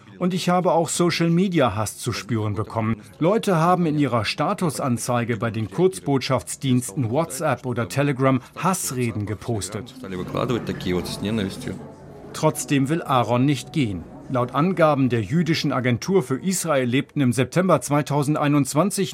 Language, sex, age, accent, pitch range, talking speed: German, male, 50-69, German, 120-155 Hz, 115 wpm